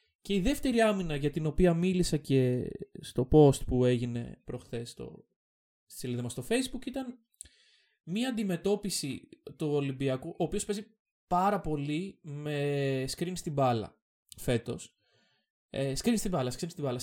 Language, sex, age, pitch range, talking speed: Greek, male, 20-39, 135-210 Hz, 135 wpm